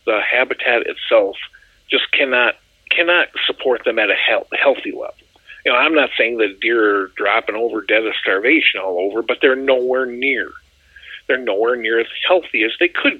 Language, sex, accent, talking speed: English, male, American, 180 wpm